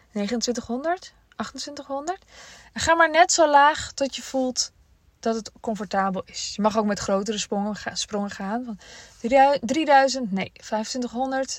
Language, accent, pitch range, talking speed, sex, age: Dutch, Dutch, 200-265 Hz, 125 wpm, female, 20-39